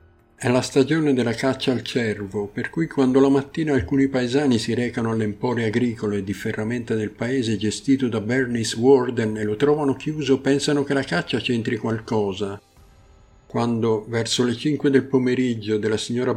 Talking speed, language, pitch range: 165 wpm, Italian, 110-135 Hz